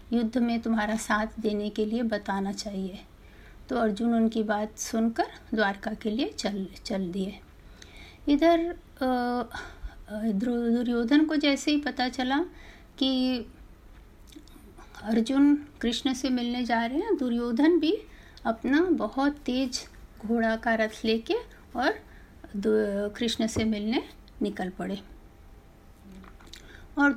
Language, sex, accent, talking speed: Hindi, female, native, 115 wpm